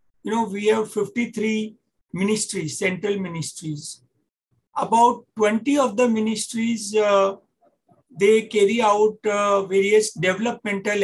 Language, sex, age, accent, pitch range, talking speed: English, male, 50-69, Indian, 180-215 Hz, 110 wpm